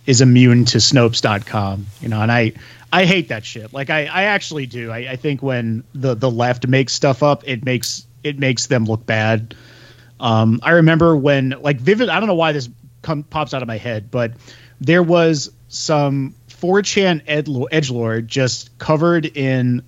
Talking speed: 185 wpm